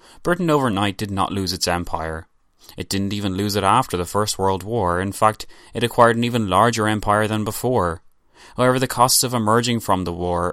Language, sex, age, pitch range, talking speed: English, male, 20-39, 95-110 Hz, 200 wpm